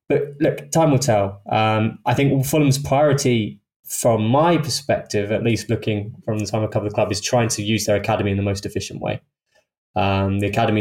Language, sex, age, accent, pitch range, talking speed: English, male, 20-39, British, 100-120 Hz, 205 wpm